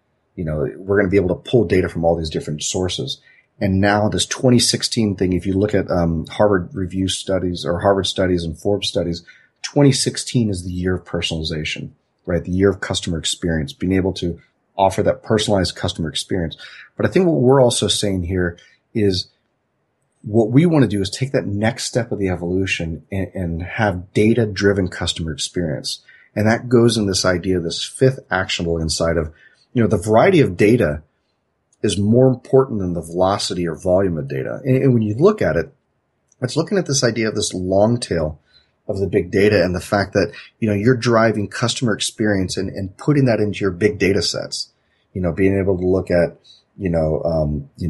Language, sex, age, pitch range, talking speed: English, male, 30-49, 90-115 Hz, 200 wpm